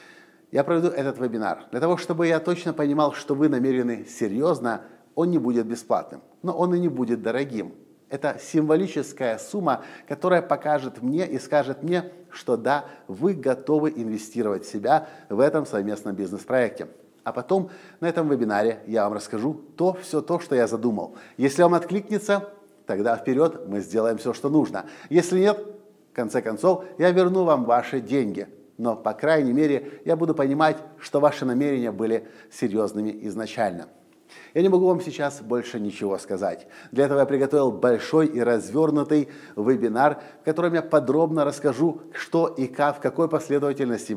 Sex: male